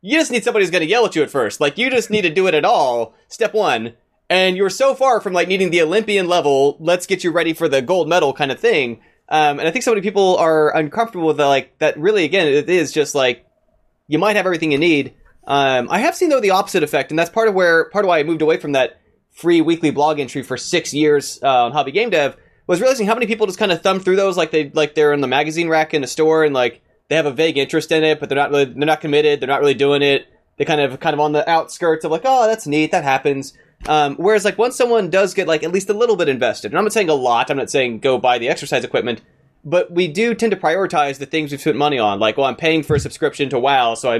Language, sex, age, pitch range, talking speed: English, male, 20-39, 140-195 Hz, 285 wpm